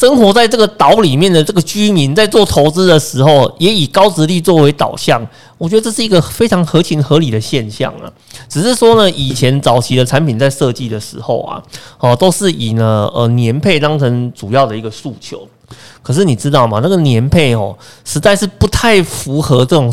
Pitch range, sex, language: 120-185 Hz, male, Chinese